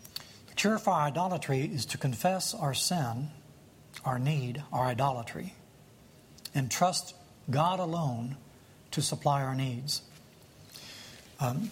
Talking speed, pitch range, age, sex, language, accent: 100 wpm, 130-170 Hz, 60-79, male, English, American